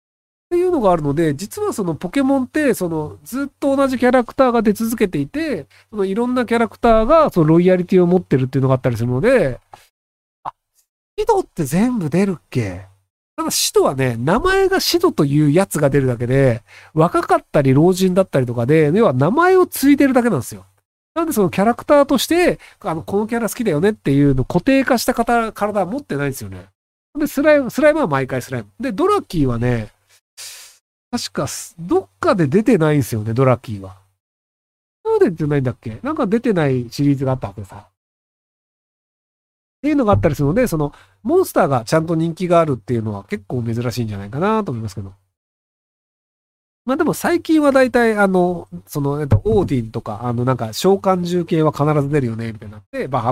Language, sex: Japanese, male